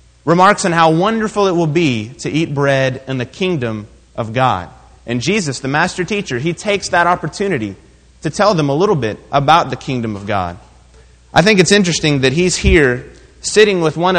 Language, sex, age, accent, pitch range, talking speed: English, male, 30-49, American, 130-180 Hz, 190 wpm